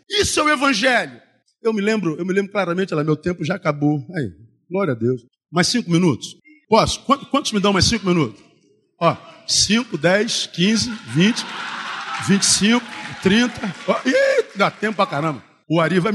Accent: Brazilian